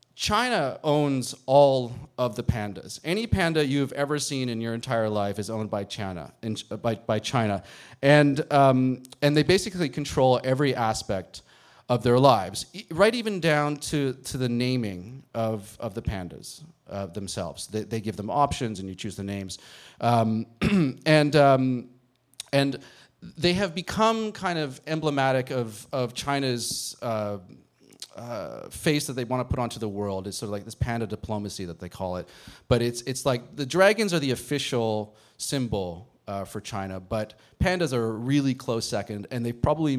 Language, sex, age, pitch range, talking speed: English, male, 30-49, 105-140 Hz, 175 wpm